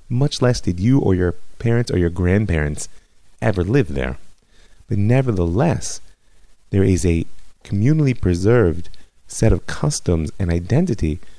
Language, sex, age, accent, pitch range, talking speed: English, male, 30-49, American, 85-115 Hz, 130 wpm